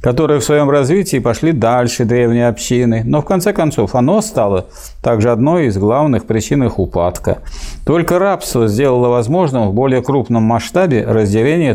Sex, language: male, Russian